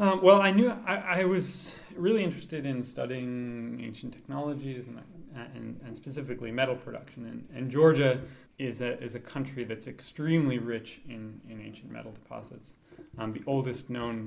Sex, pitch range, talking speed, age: male, 120-150 Hz, 165 wpm, 30-49